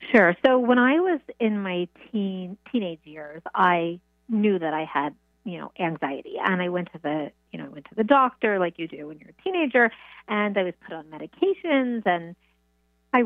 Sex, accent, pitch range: female, American, 160-225 Hz